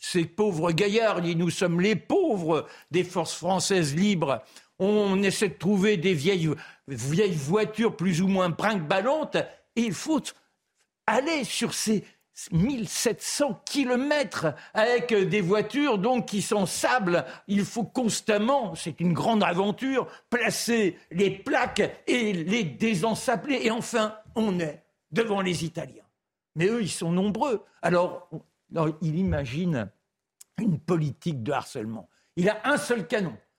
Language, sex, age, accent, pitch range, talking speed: French, male, 60-79, French, 165-215 Hz, 130 wpm